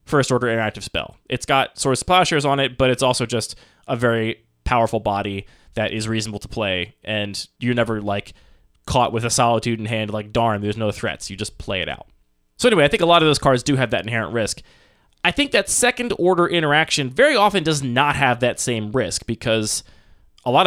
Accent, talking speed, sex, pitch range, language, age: American, 215 wpm, male, 110-145 Hz, English, 20-39